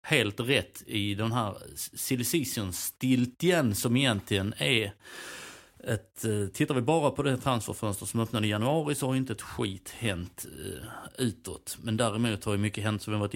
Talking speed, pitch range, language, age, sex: 165 wpm, 100-115 Hz, Swedish, 30-49, male